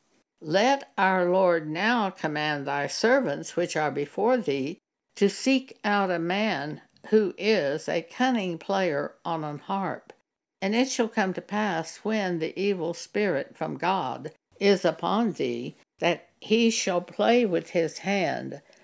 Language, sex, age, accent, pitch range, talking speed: English, female, 60-79, American, 165-220 Hz, 145 wpm